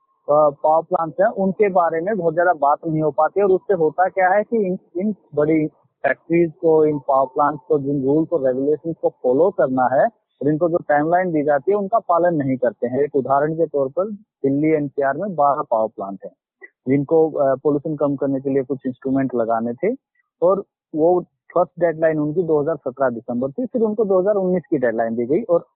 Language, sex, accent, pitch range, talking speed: Hindi, male, native, 135-180 Hz, 200 wpm